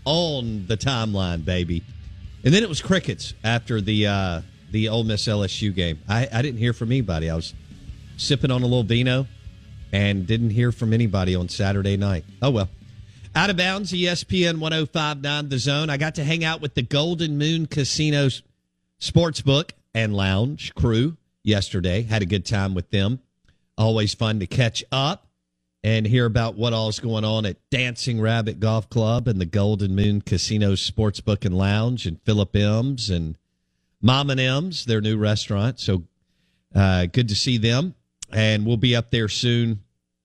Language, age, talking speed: English, 50-69, 175 wpm